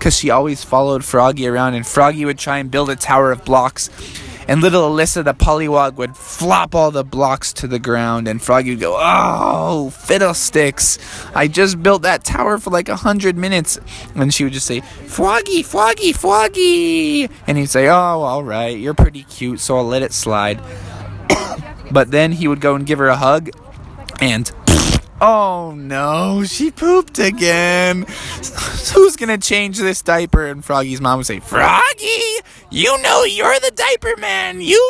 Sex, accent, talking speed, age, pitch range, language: male, American, 175 wpm, 20-39, 130-195 Hz, English